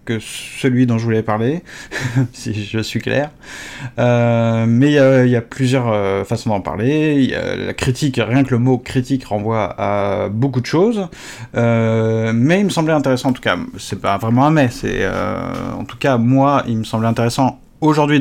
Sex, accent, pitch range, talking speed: male, French, 115-135 Hz, 200 wpm